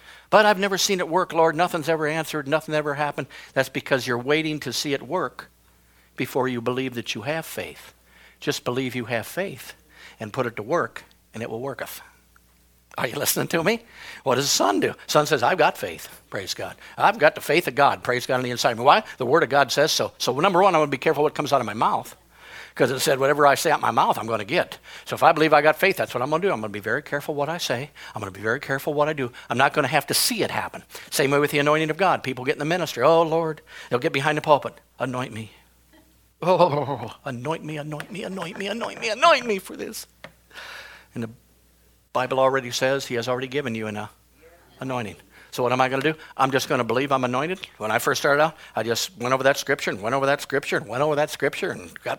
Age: 60-79